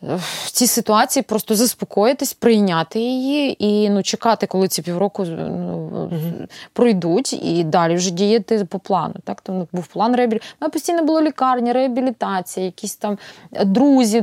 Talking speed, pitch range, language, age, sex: 150 wpm, 190-250 Hz, Ukrainian, 20-39, female